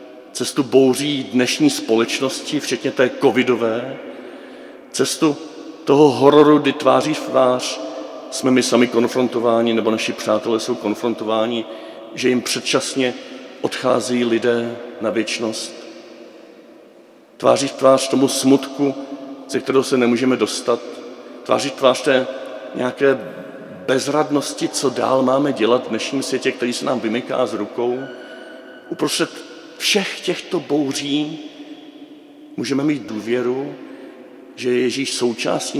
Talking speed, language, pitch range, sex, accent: 115 wpm, Czech, 115-140 Hz, male, native